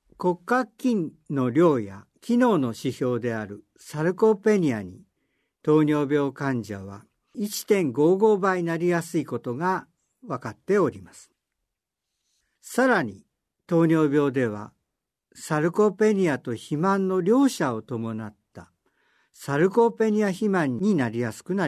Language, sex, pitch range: Japanese, male, 125-195 Hz